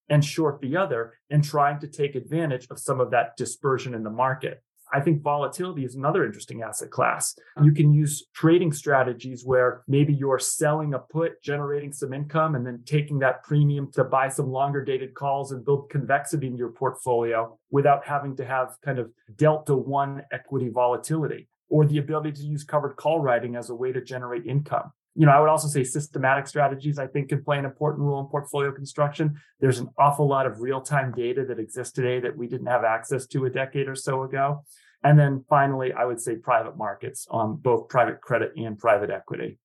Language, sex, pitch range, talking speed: English, male, 125-145 Hz, 205 wpm